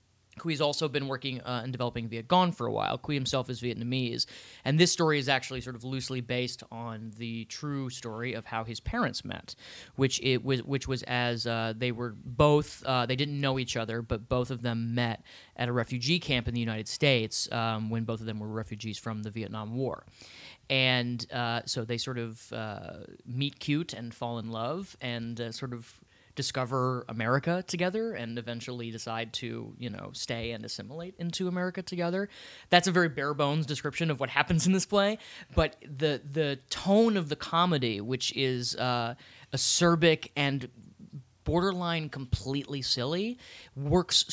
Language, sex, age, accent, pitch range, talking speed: English, male, 30-49, American, 120-150 Hz, 180 wpm